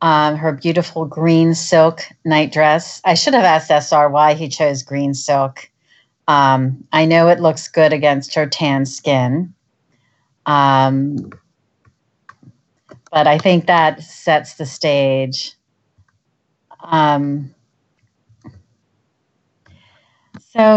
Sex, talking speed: female, 105 wpm